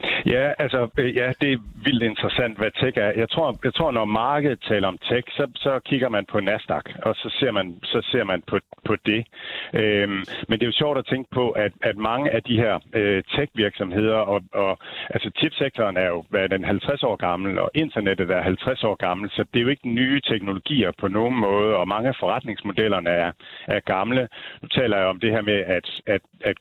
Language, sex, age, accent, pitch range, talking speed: Danish, male, 60-79, native, 100-120 Hz, 215 wpm